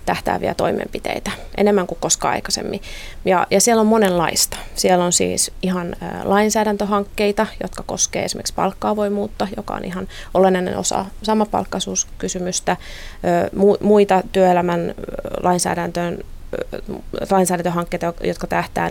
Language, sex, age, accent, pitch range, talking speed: Finnish, female, 30-49, native, 165-185 Hz, 110 wpm